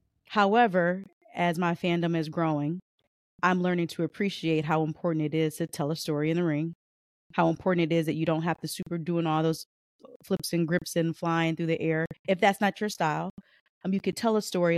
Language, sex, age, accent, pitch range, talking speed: English, female, 30-49, American, 165-195 Hz, 215 wpm